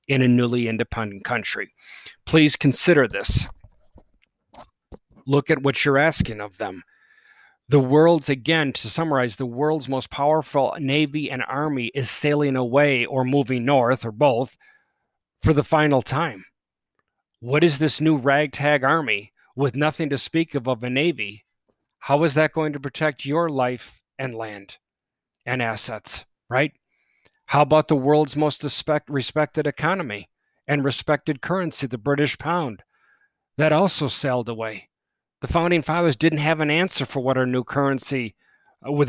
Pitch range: 130-160 Hz